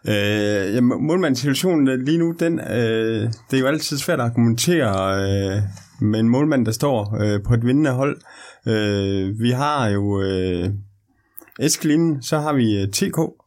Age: 30-49